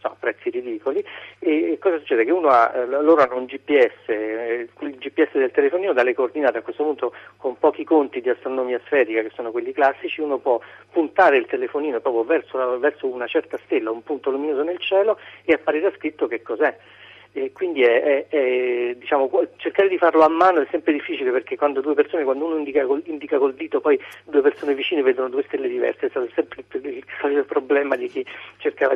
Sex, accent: male, native